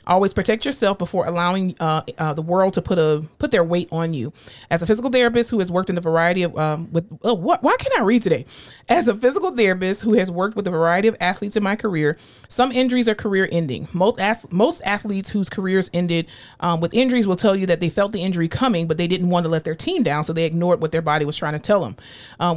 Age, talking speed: 30-49, 255 wpm